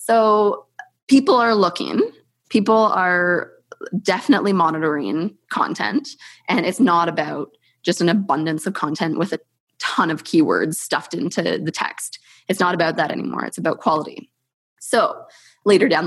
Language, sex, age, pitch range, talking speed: English, female, 20-39, 160-200 Hz, 140 wpm